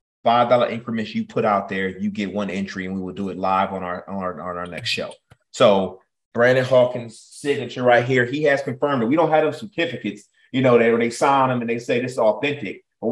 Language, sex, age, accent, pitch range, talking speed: English, male, 30-49, American, 110-145 Hz, 245 wpm